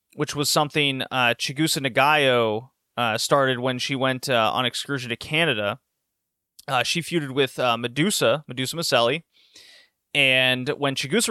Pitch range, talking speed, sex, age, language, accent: 130-165 Hz, 140 wpm, male, 30-49, English, American